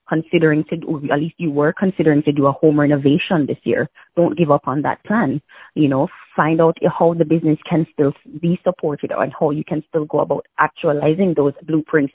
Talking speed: 210 wpm